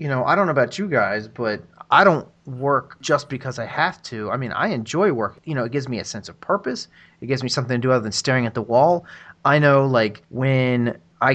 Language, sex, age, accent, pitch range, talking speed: English, male, 30-49, American, 110-145 Hz, 255 wpm